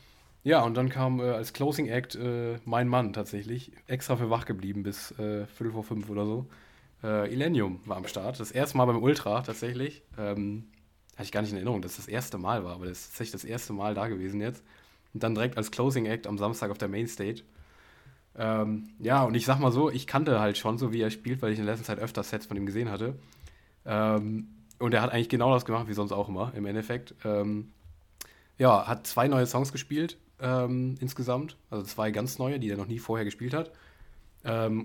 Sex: male